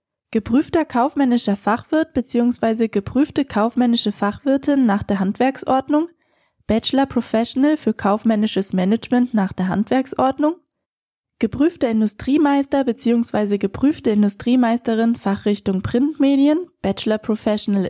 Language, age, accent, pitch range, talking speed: German, 20-39, German, 210-275 Hz, 90 wpm